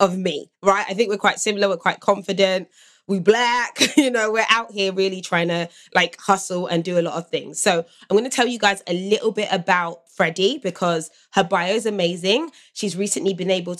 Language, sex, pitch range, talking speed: English, female, 170-210 Hz, 220 wpm